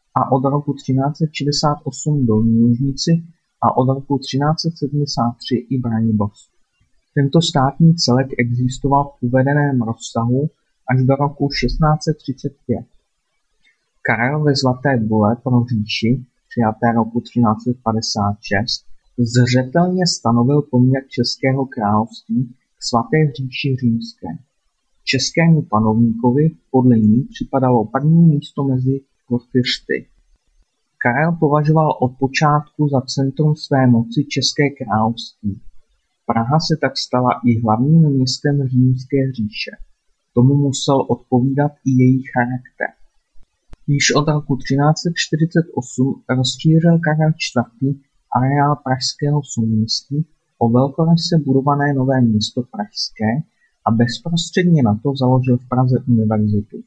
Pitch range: 120-145 Hz